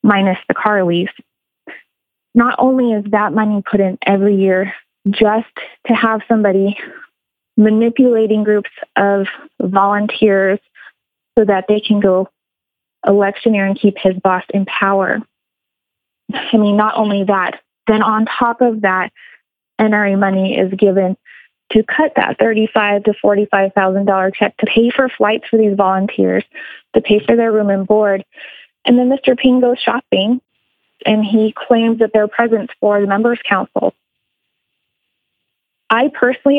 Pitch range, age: 195-230 Hz, 20-39